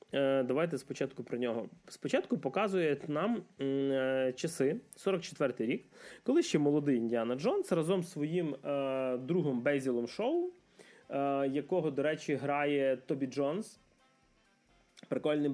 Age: 20-39